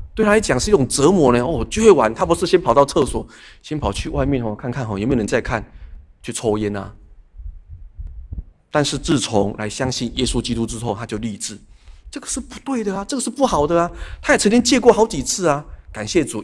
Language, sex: Chinese, male